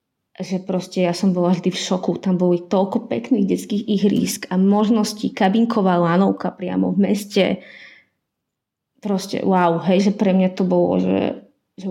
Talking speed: 155 wpm